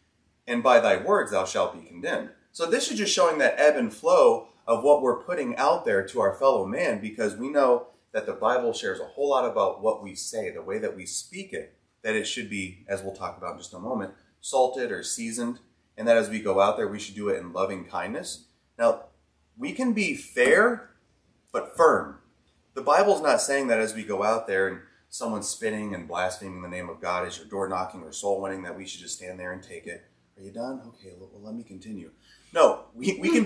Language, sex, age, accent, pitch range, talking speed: English, male, 30-49, American, 95-145 Hz, 235 wpm